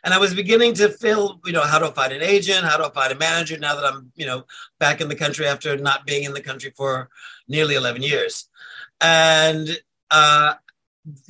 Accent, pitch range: American, 150-175 Hz